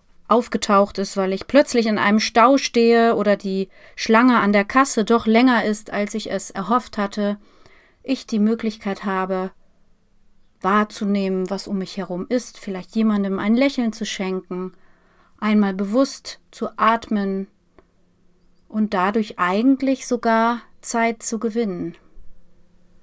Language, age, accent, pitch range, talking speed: German, 30-49, German, 200-230 Hz, 130 wpm